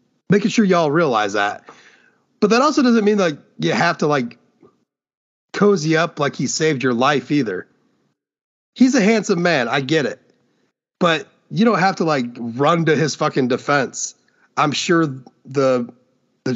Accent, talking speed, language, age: American, 165 wpm, English, 30-49